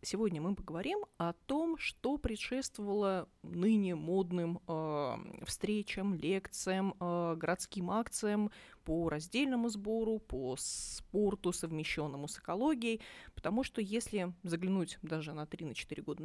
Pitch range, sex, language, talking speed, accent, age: 170-220 Hz, female, Russian, 120 wpm, native, 30-49